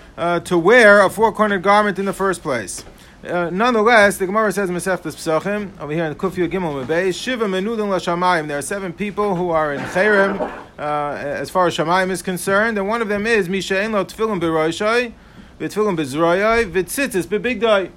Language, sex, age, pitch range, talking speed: English, male, 40-59, 175-220 Hz, 145 wpm